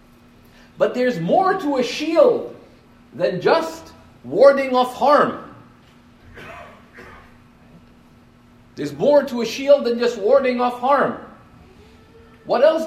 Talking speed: 105 wpm